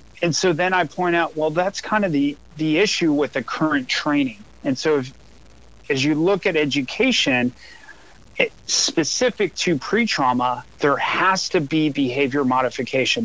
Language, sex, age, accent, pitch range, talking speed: English, male, 40-59, American, 130-160 Hz, 160 wpm